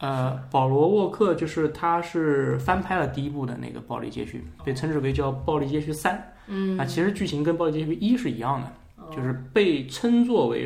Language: Chinese